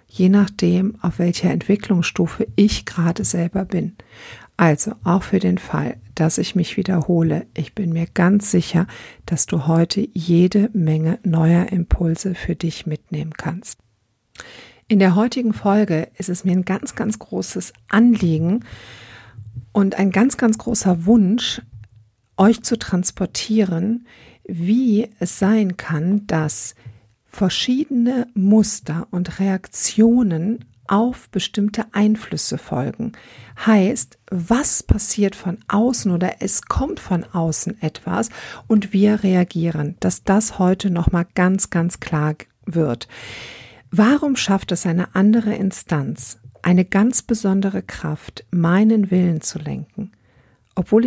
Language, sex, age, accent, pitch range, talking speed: German, female, 50-69, German, 165-210 Hz, 125 wpm